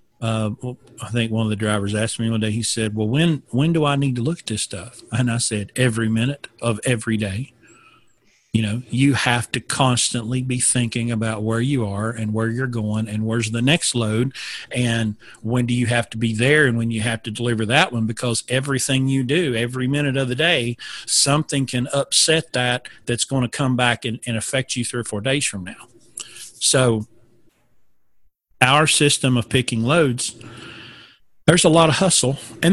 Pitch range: 115-135 Hz